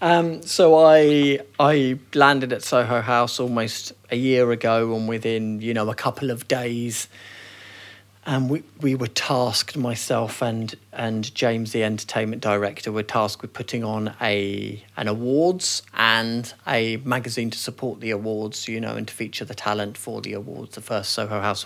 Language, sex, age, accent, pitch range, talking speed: English, male, 30-49, British, 105-125 Hz, 170 wpm